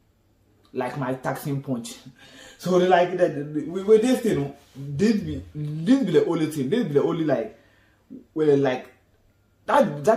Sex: male